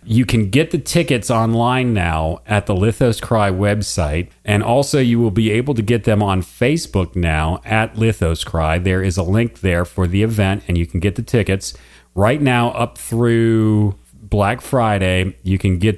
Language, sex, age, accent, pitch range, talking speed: English, male, 40-59, American, 90-110 Hz, 190 wpm